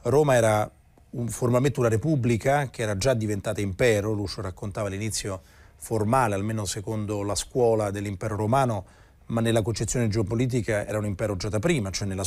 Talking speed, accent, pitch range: 160 wpm, native, 105-125 Hz